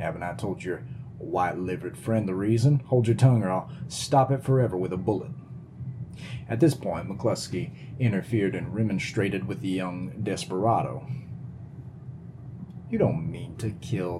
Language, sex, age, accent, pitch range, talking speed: English, male, 30-49, American, 115-140 Hz, 150 wpm